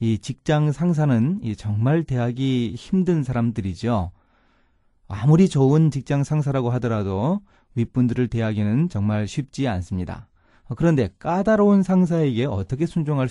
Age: 30-49